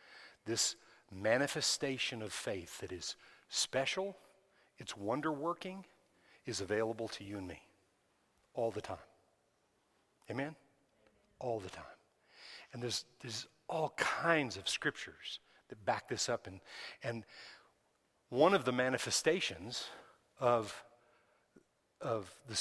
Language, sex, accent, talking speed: English, male, American, 110 wpm